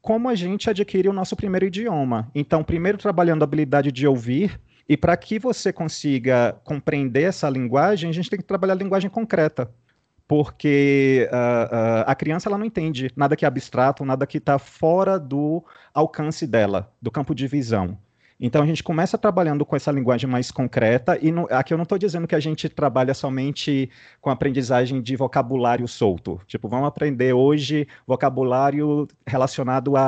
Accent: Brazilian